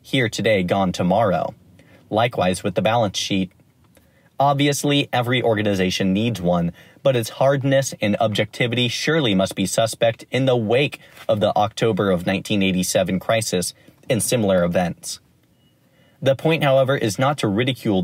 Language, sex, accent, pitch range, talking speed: English, male, American, 100-135 Hz, 140 wpm